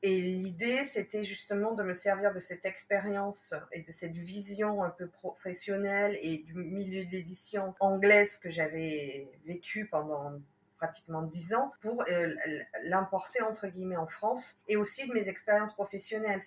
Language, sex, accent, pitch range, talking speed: French, female, French, 175-205 Hz, 155 wpm